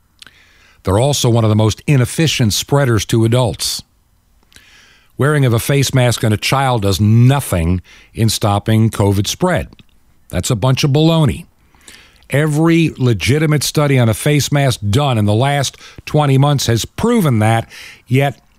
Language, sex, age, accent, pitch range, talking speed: English, male, 50-69, American, 105-140 Hz, 150 wpm